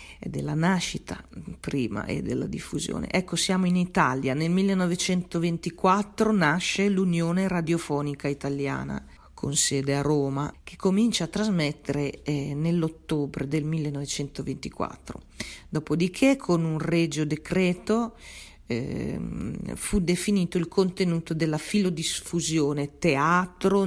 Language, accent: Italian, native